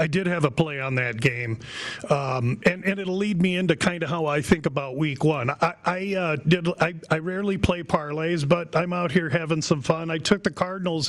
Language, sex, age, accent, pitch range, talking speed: English, male, 40-59, American, 155-185 Hz, 235 wpm